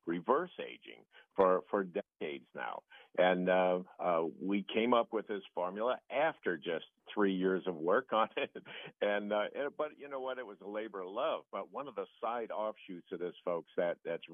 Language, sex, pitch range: English, male, 95-120 Hz